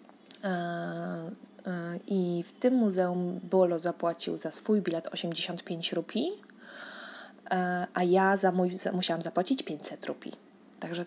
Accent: native